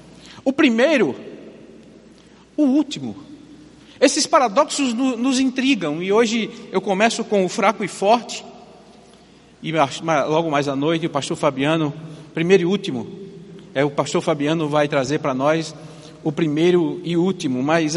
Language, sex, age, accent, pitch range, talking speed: Portuguese, male, 50-69, Brazilian, 180-245 Hz, 135 wpm